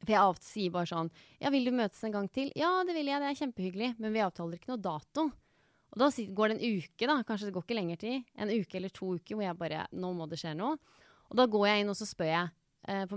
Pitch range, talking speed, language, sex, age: 180-255 Hz, 265 wpm, English, female, 20-39